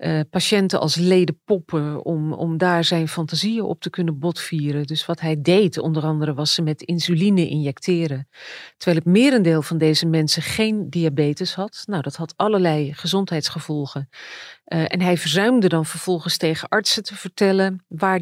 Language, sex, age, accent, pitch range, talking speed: Dutch, female, 40-59, Dutch, 160-190 Hz, 165 wpm